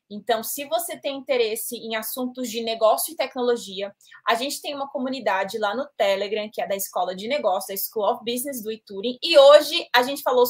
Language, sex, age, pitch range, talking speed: Portuguese, female, 20-39, 215-270 Hz, 205 wpm